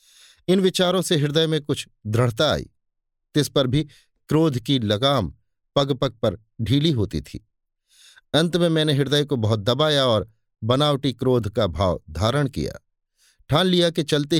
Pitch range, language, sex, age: 110-155 Hz, Hindi, male, 50-69